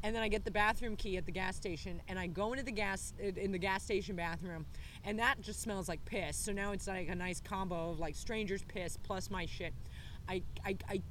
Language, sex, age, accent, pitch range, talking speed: English, female, 30-49, American, 175-220 Hz, 245 wpm